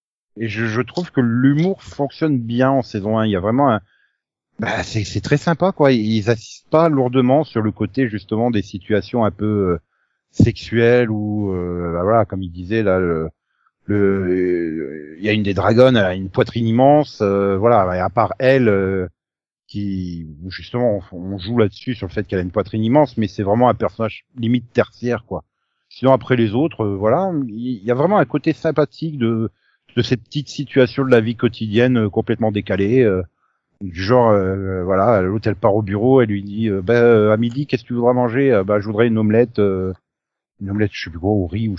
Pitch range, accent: 100-120 Hz, French